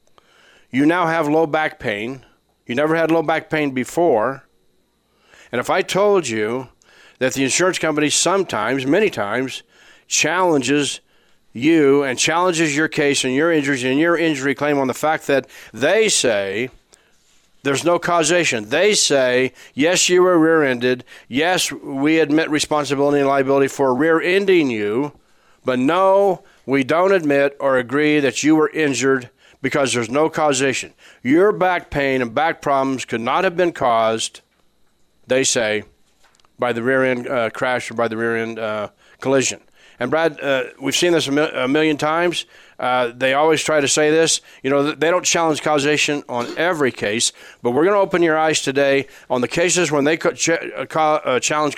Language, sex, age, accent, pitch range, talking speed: English, male, 40-59, American, 130-160 Hz, 175 wpm